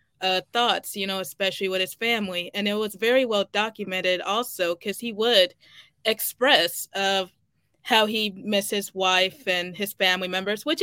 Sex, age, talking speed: female, 20-39, 170 wpm